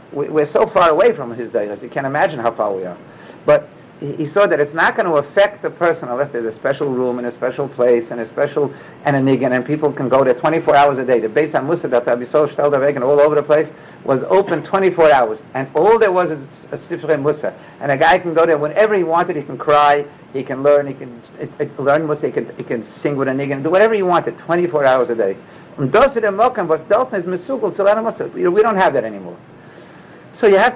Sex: male